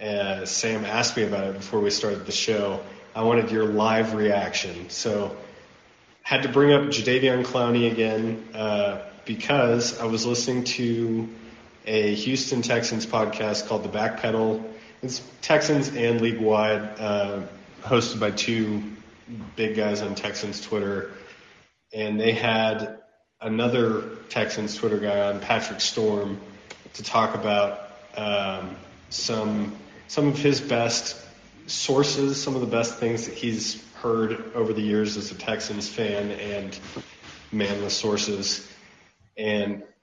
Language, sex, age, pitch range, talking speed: English, male, 30-49, 105-115 Hz, 135 wpm